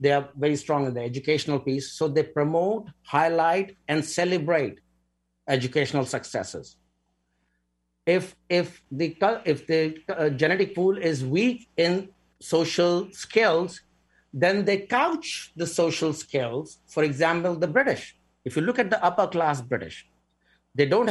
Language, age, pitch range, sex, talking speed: English, 60-79, 130-170 Hz, male, 135 wpm